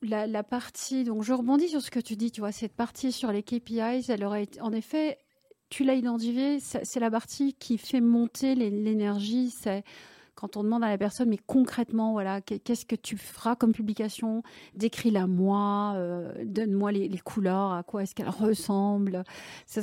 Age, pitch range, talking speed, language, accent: 40-59, 210-255 Hz, 185 wpm, French, French